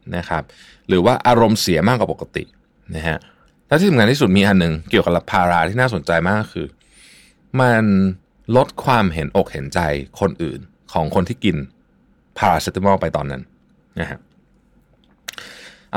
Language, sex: Thai, male